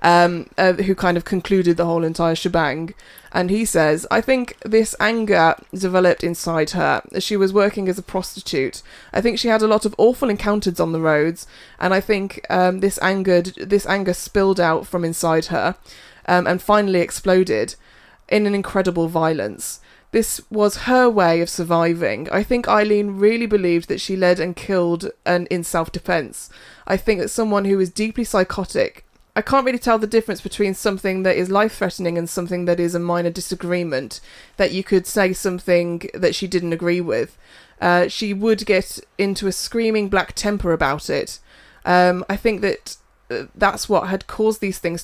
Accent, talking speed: British, 185 wpm